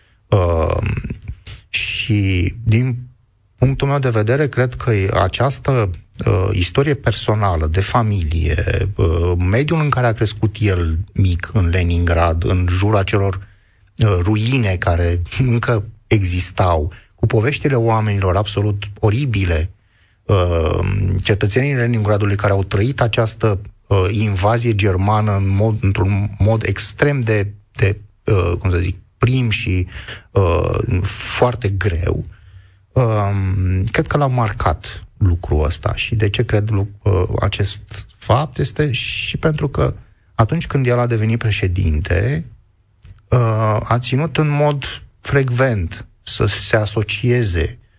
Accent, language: native, Romanian